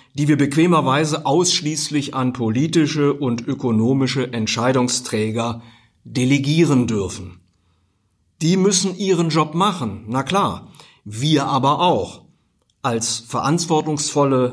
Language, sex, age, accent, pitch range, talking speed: German, male, 50-69, German, 120-155 Hz, 95 wpm